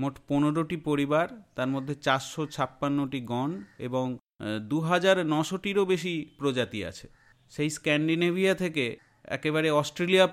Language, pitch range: Bengali, 130-165 Hz